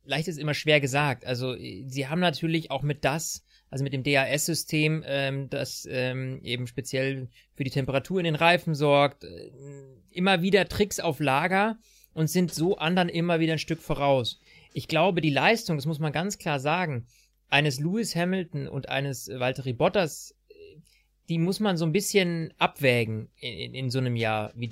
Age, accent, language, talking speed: 30-49, German, German, 180 wpm